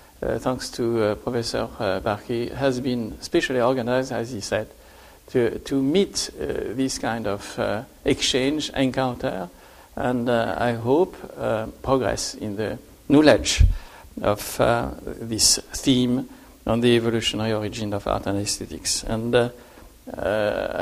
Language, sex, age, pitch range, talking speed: English, male, 60-79, 115-130 Hz, 135 wpm